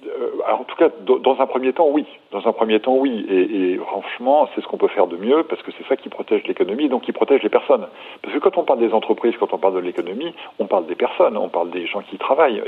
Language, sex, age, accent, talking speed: French, male, 50-69, French, 270 wpm